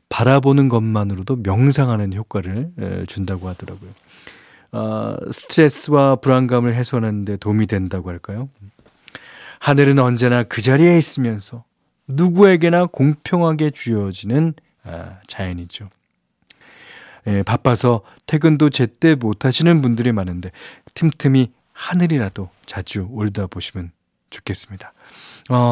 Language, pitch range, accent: Korean, 100-135 Hz, native